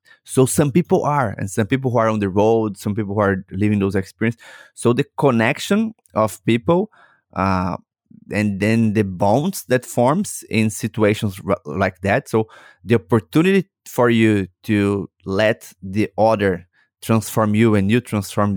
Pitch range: 100-130 Hz